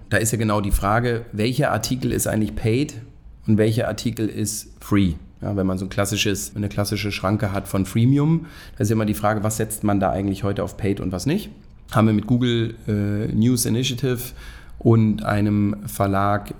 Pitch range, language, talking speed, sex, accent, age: 100-120 Hz, German, 195 wpm, male, German, 30-49